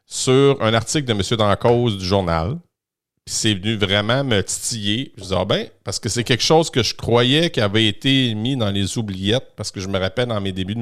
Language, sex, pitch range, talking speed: French, male, 100-135 Hz, 235 wpm